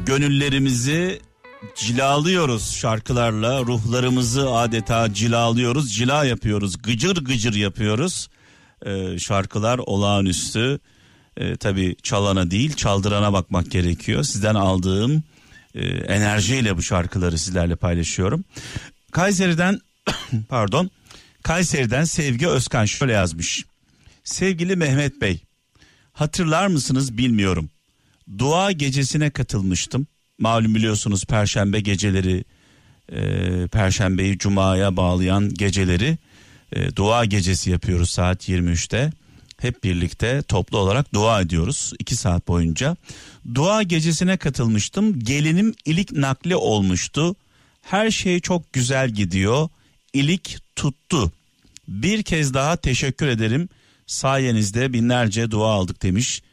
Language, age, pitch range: Turkish, 50-69, 100-140 Hz